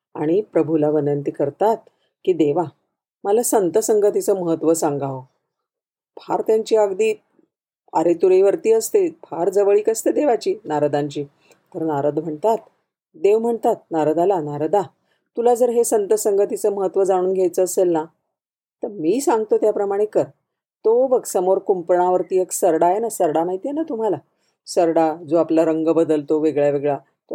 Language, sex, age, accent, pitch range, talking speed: Marathi, female, 40-59, native, 165-235 Hz, 145 wpm